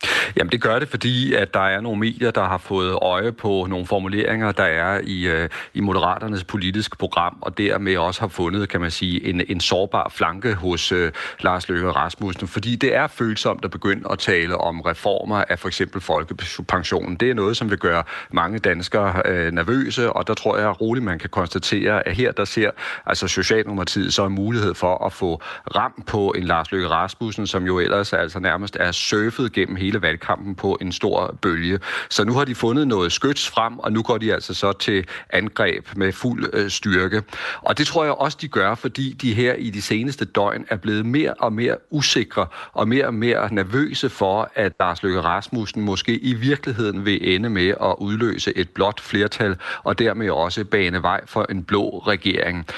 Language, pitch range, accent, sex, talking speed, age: Danish, 95-115 Hz, native, male, 200 wpm, 40-59